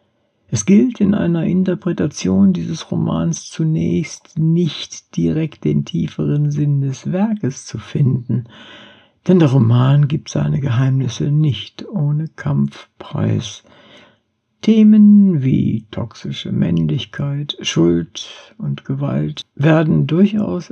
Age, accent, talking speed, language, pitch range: 60-79, German, 100 wpm, German, 100-165 Hz